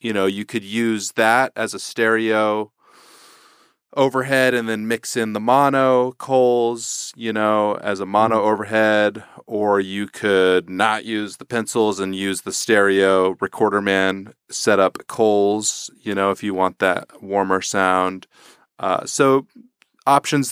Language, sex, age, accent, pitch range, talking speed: English, male, 30-49, American, 95-115 Hz, 145 wpm